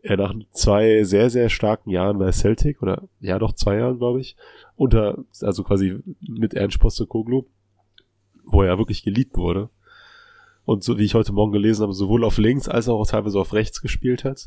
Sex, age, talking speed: male, 20-39, 190 wpm